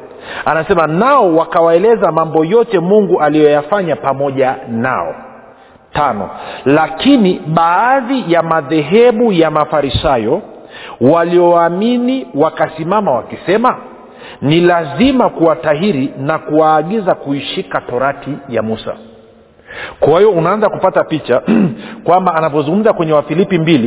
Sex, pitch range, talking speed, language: male, 140-185 Hz, 100 wpm, Swahili